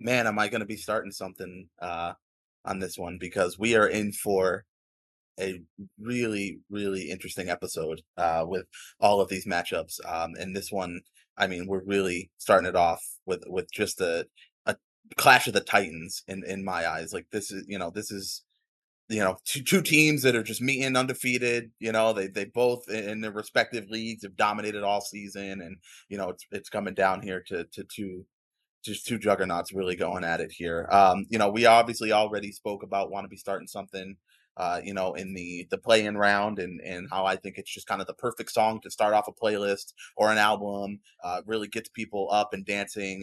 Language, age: English, 20-39